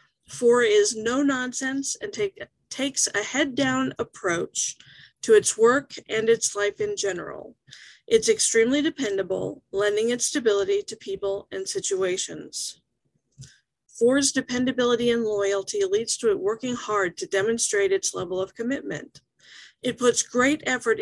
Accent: American